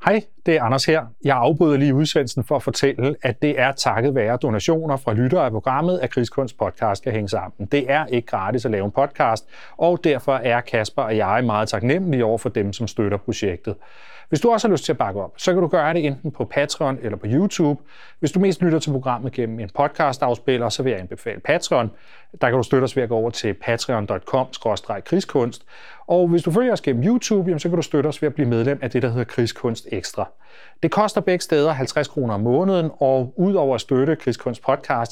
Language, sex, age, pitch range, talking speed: Danish, male, 30-49, 120-155 Hz, 225 wpm